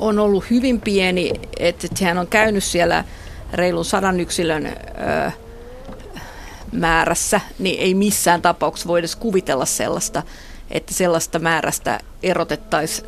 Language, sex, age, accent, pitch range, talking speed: Finnish, female, 50-69, native, 175-215 Hz, 115 wpm